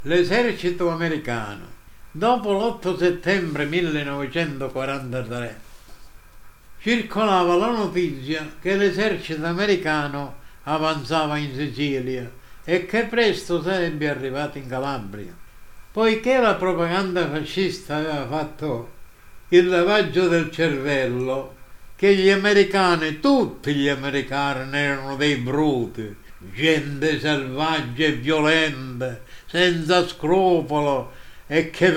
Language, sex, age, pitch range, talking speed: Italian, male, 60-79, 145-185 Hz, 90 wpm